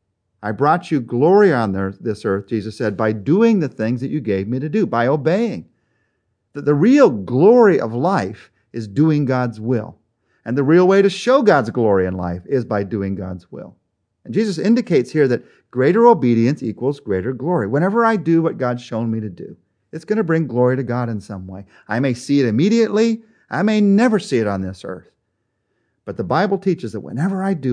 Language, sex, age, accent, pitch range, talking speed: English, male, 40-59, American, 110-165 Hz, 205 wpm